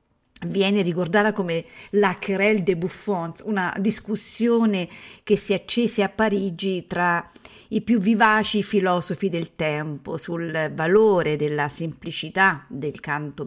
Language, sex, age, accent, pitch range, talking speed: Italian, female, 50-69, native, 165-215 Hz, 120 wpm